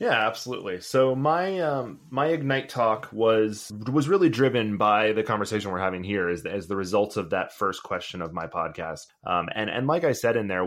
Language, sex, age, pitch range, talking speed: English, male, 20-39, 100-135 Hz, 210 wpm